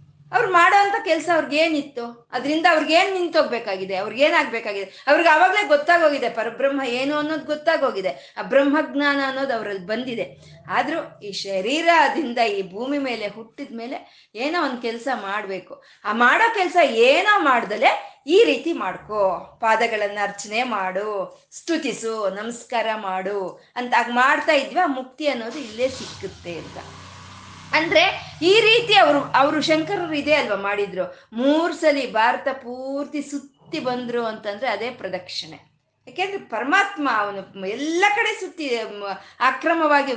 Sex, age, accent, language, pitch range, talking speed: female, 20-39, native, Kannada, 220-325 Hz, 115 wpm